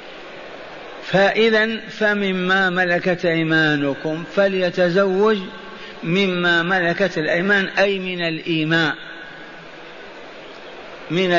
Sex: male